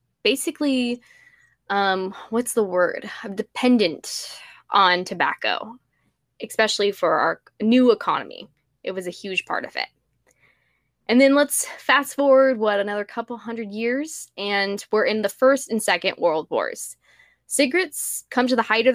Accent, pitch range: American, 195-245 Hz